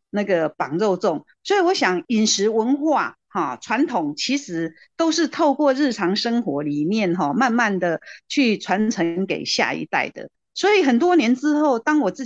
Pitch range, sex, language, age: 180-265 Hz, female, Chinese, 50-69